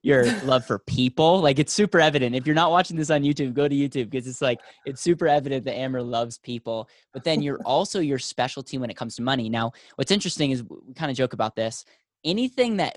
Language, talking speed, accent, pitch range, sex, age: English, 235 wpm, American, 120-150 Hz, male, 10-29